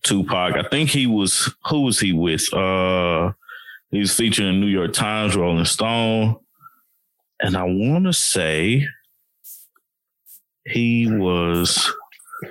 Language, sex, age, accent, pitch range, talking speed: English, male, 20-39, American, 80-115 Hz, 110 wpm